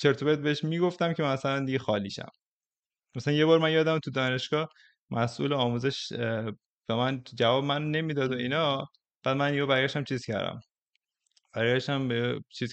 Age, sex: 20-39, male